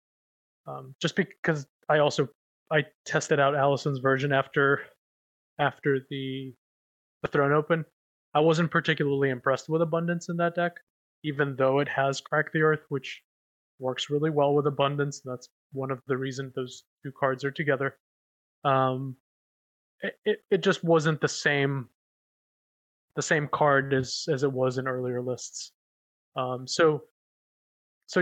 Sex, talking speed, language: male, 145 wpm, English